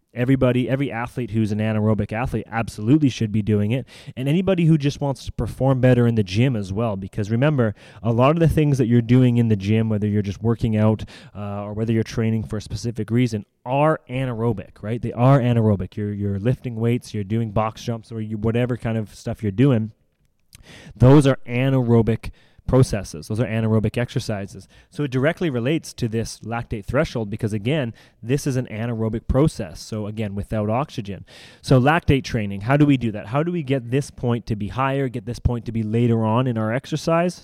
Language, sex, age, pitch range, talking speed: English, male, 20-39, 110-130 Hz, 205 wpm